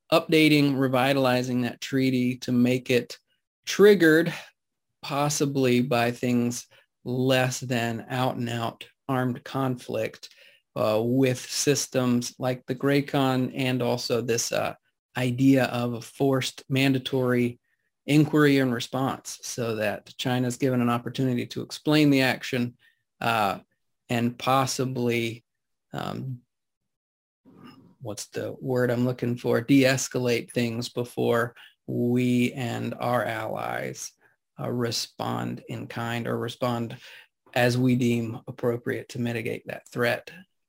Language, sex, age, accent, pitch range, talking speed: English, male, 30-49, American, 120-135 Hz, 110 wpm